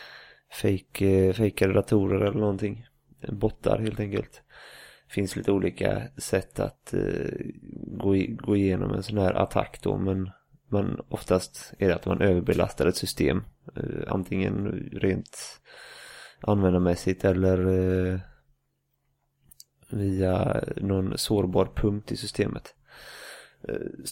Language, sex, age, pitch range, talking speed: English, male, 30-49, 95-110 Hz, 115 wpm